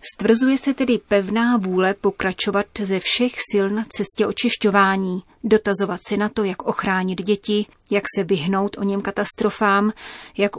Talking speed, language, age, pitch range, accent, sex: 145 wpm, Czech, 30-49, 190-215 Hz, native, female